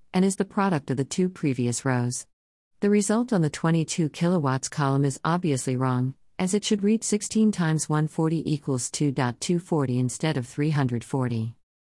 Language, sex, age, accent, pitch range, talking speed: Italian, female, 50-69, American, 130-165 Hz, 155 wpm